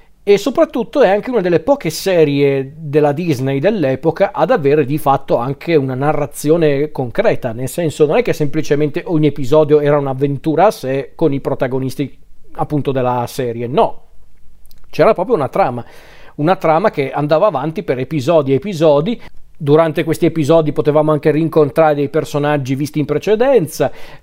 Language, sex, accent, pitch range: Italian, male, native, 140-160 Hz